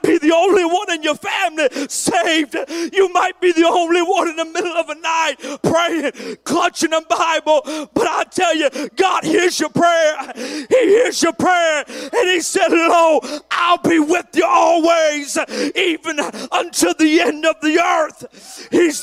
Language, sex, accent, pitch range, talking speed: English, male, American, 295-345 Hz, 165 wpm